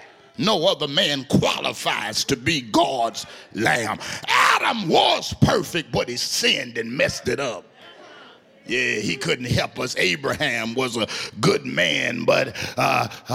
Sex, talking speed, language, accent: male, 135 wpm, English, American